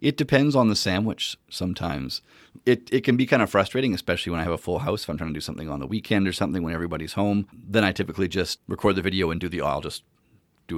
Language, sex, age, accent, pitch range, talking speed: English, male, 40-59, American, 80-100 Hz, 260 wpm